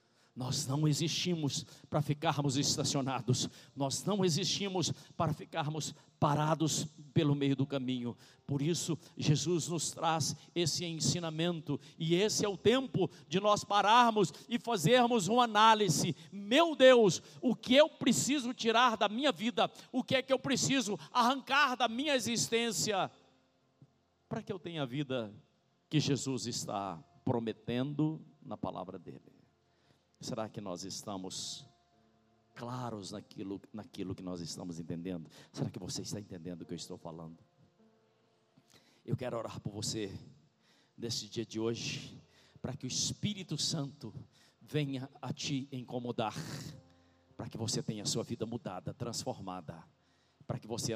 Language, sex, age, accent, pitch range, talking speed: Portuguese, male, 50-69, Brazilian, 115-175 Hz, 140 wpm